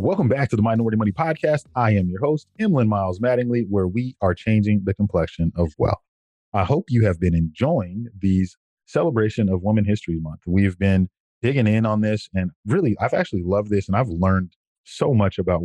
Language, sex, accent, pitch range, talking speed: English, male, American, 90-110 Hz, 200 wpm